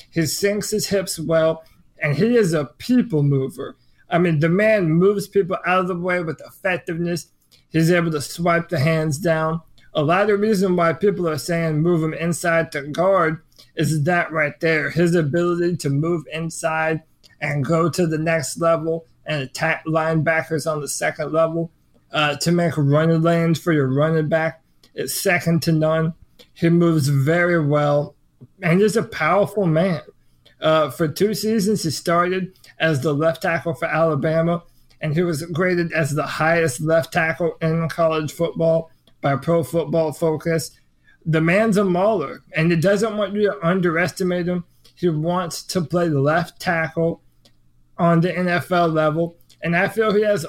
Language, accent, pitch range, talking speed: English, American, 155-175 Hz, 170 wpm